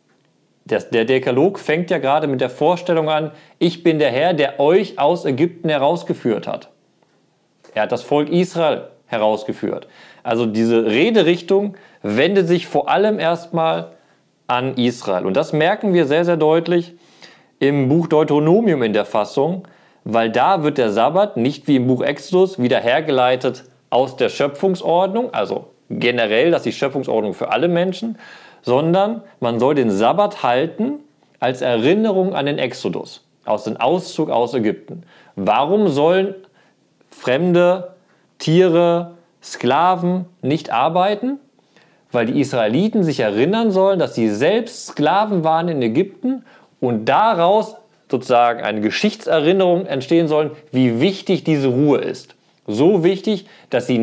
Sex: male